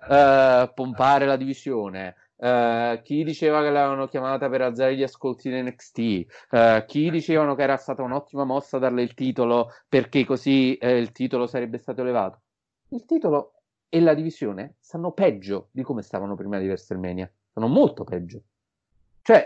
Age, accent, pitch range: 30-49, native, 120-155 Hz